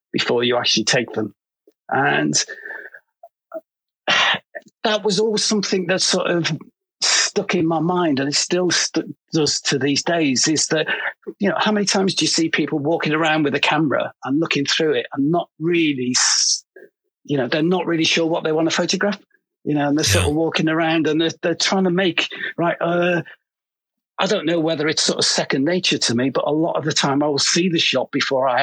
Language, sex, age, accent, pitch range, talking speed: English, male, 50-69, British, 140-180 Hz, 205 wpm